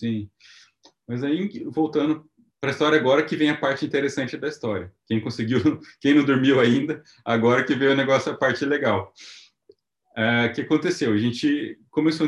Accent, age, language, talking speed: Brazilian, 20-39, Portuguese, 175 wpm